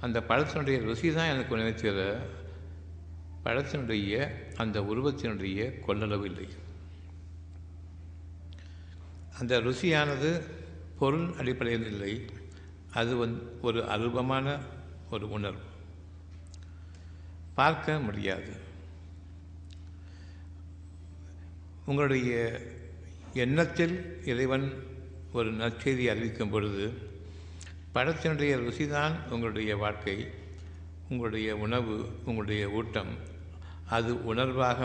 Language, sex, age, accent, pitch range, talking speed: Tamil, male, 60-79, native, 85-120 Hz, 70 wpm